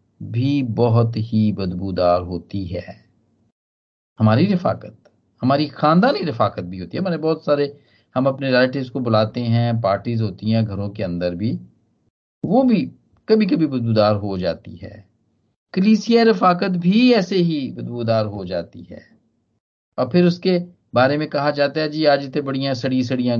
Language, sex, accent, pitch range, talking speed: Hindi, male, native, 105-155 Hz, 155 wpm